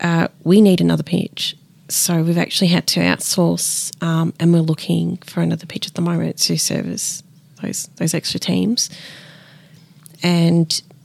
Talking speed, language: 150 wpm, English